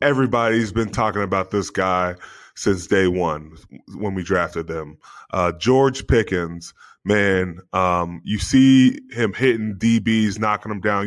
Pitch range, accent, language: 95-125 Hz, American, English